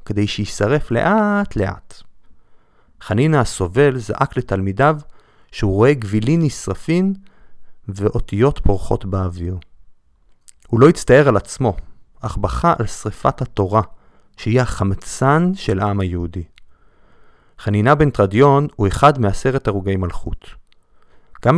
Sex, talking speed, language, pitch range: male, 105 wpm, Hebrew, 100-145 Hz